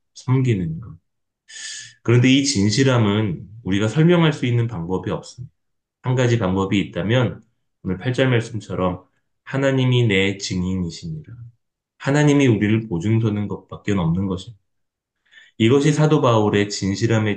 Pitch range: 95-120 Hz